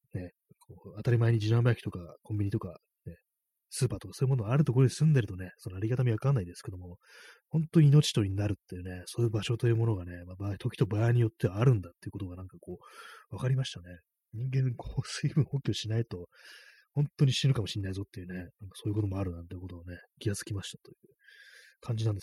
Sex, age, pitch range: male, 20-39, 95-135 Hz